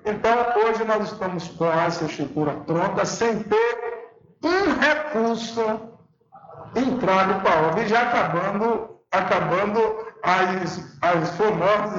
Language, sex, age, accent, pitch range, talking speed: Portuguese, male, 60-79, Brazilian, 180-230 Hz, 105 wpm